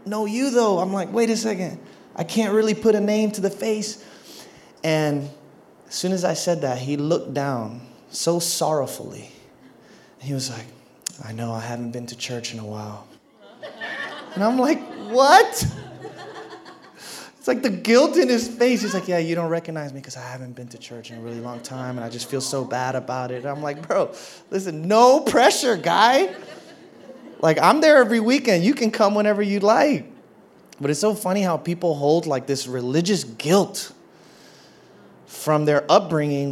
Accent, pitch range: American, 140-205 Hz